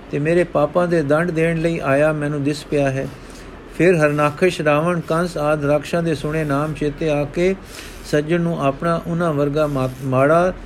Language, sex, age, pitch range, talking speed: Punjabi, male, 50-69, 145-175 Hz, 170 wpm